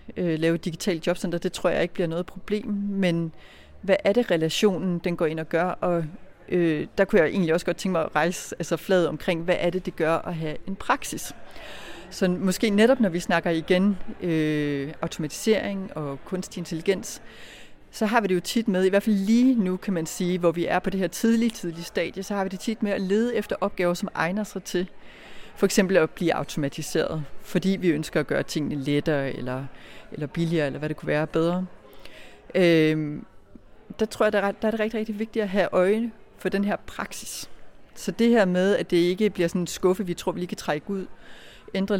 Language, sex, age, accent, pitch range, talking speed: Danish, female, 30-49, native, 165-200 Hz, 215 wpm